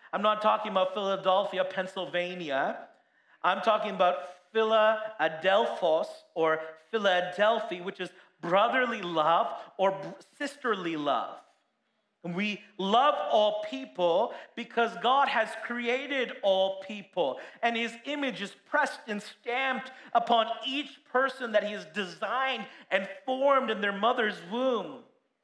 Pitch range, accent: 180-245 Hz, American